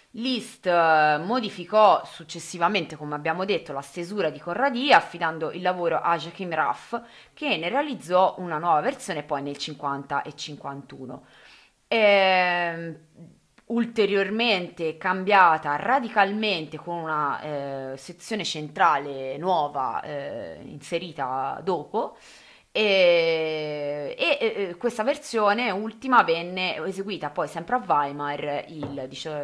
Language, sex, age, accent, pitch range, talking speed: Italian, female, 20-39, native, 150-200 Hz, 110 wpm